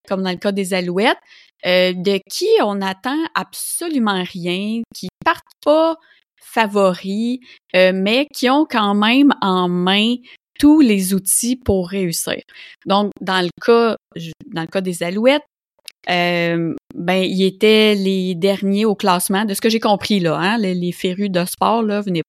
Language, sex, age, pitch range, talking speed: French, female, 20-39, 185-245 Hz, 165 wpm